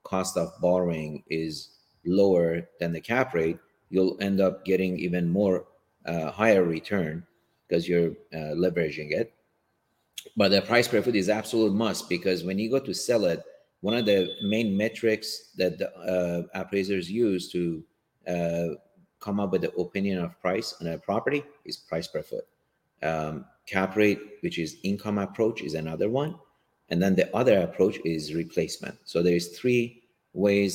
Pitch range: 85-100 Hz